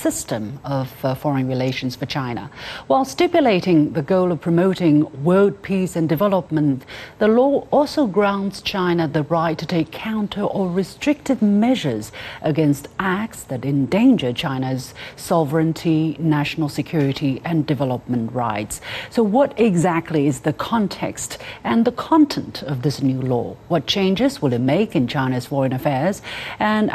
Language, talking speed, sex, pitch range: English, 140 wpm, female, 140-195 Hz